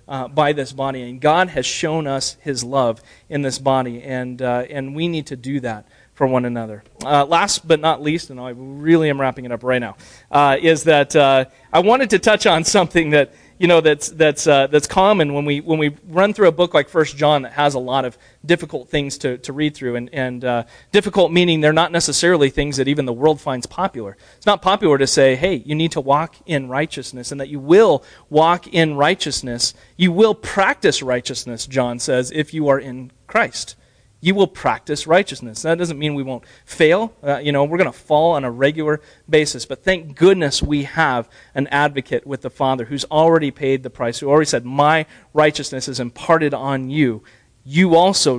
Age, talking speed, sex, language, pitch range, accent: 40-59, 210 wpm, male, English, 130-165 Hz, American